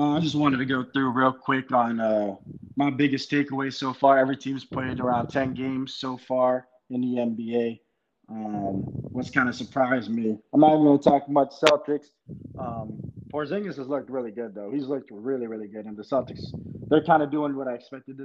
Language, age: English, 20-39